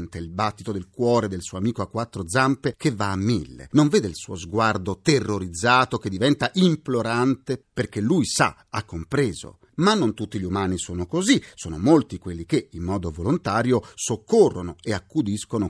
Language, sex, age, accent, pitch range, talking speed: Italian, male, 40-59, native, 95-140 Hz, 170 wpm